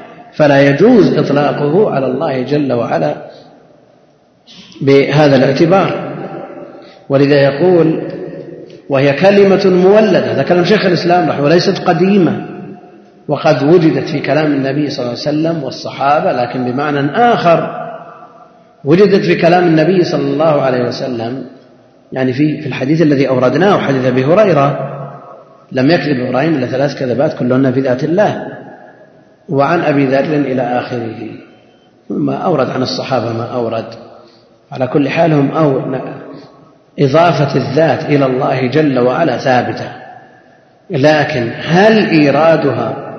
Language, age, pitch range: Arabic, 40-59, 130-175 Hz